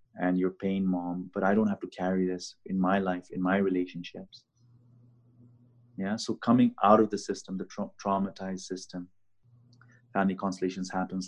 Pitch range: 95-120 Hz